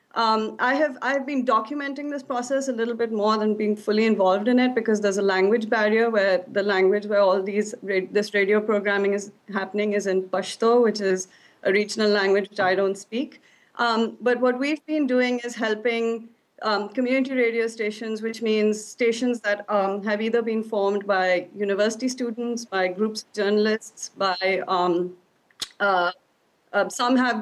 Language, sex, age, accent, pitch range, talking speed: English, female, 30-49, Indian, 200-240 Hz, 175 wpm